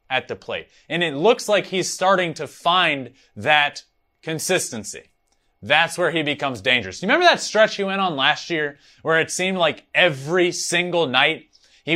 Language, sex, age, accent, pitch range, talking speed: English, male, 20-39, American, 120-175 Hz, 175 wpm